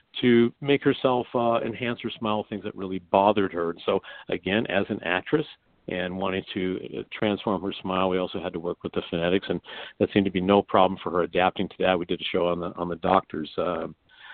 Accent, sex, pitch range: American, male, 95-115 Hz